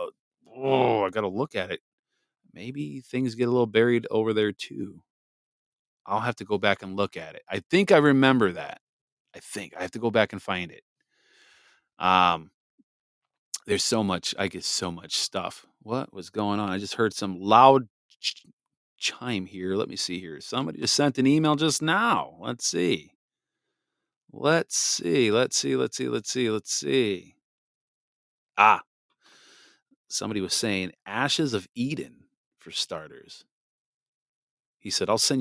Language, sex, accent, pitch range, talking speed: English, male, American, 100-135 Hz, 165 wpm